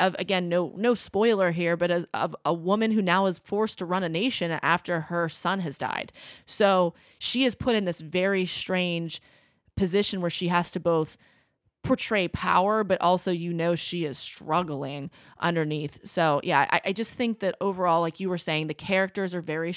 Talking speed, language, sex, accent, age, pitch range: 195 wpm, English, female, American, 20-39, 155-190 Hz